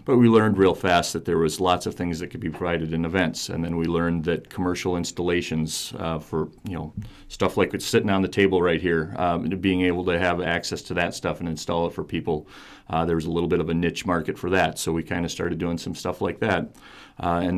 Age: 40-59